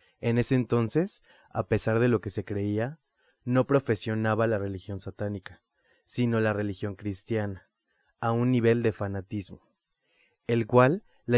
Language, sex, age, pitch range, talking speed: Spanish, male, 20-39, 105-130 Hz, 140 wpm